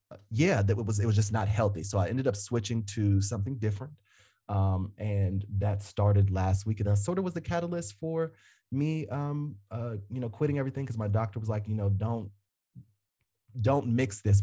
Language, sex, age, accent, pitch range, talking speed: English, male, 20-39, American, 100-115 Hz, 200 wpm